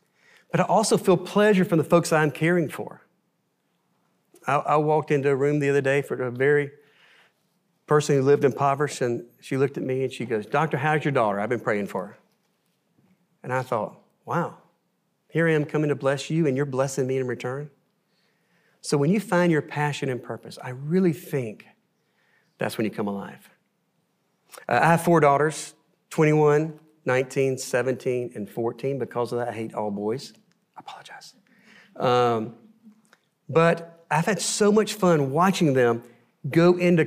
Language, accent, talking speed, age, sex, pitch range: English, American, 175 wpm, 40-59, male, 130-175 Hz